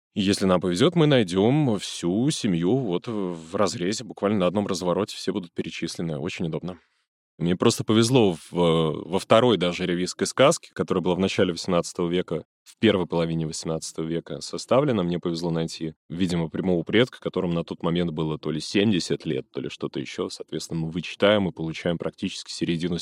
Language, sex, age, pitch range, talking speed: Russian, male, 20-39, 80-105 Hz, 170 wpm